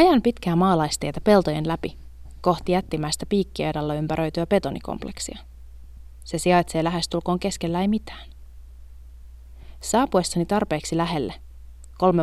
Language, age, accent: Finnish, 30-49, native